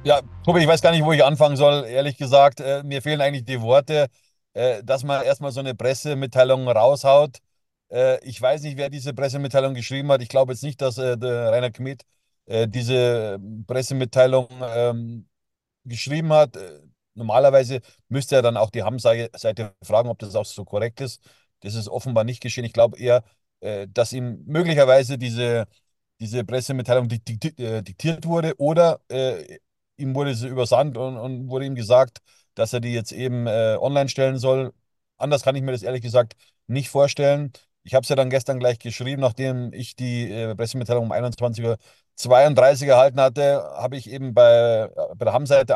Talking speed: 165 wpm